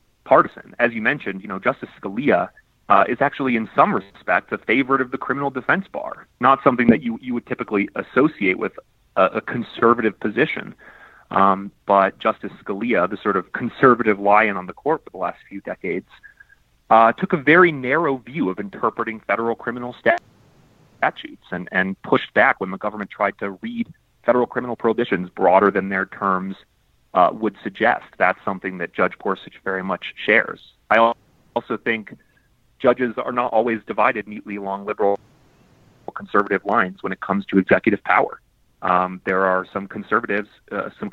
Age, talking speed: 30-49, 170 wpm